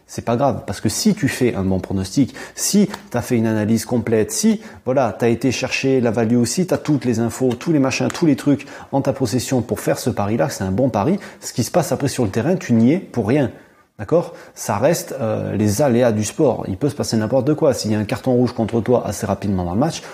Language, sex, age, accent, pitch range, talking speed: French, male, 30-49, French, 115-145 Hz, 260 wpm